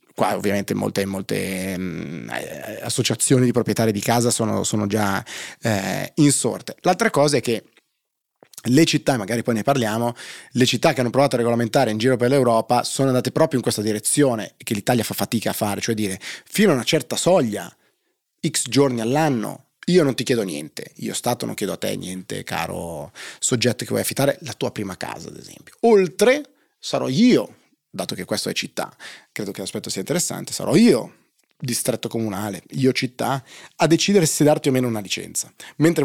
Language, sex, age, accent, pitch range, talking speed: Italian, male, 30-49, native, 110-140 Hz, 180 wpm